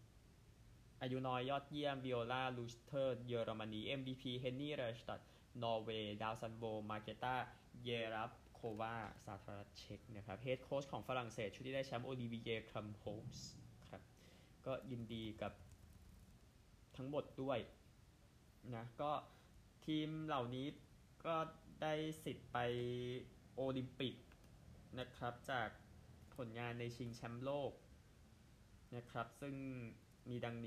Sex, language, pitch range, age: male, Thai, 110-130 Hz, 20-39